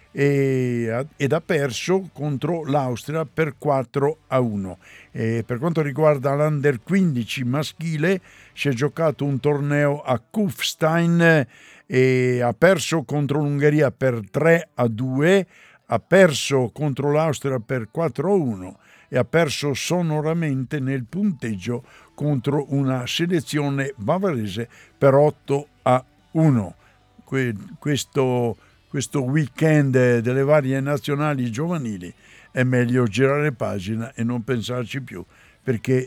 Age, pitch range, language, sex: 60-79, 120-160 Hz, Italian, male